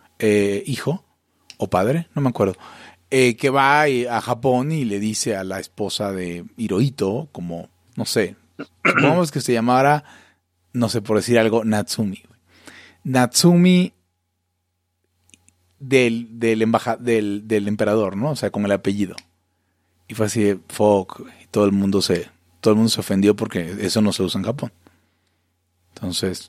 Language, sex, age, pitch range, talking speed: English, male, 30-49, 90-125 Hz, 155 wpm